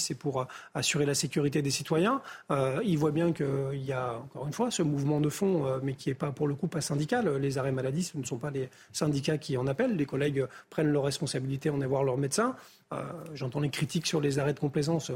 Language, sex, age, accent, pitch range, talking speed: French, male, 40-59, French, 140-170 Hz, 245 wpm